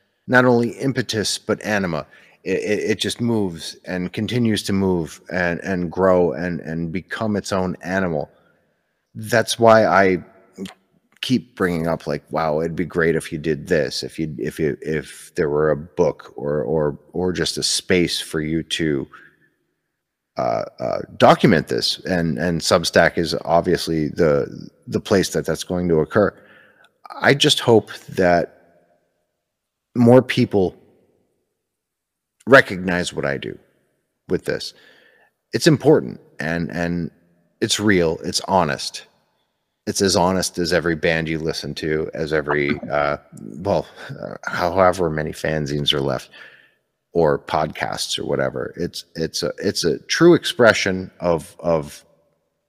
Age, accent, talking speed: 30-49, American, 140 wpm